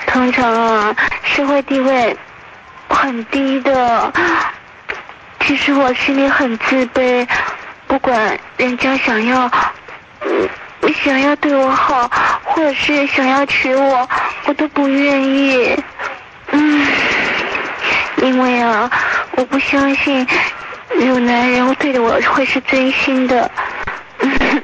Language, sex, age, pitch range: Chinese, female, 20-39, 245-280 Hz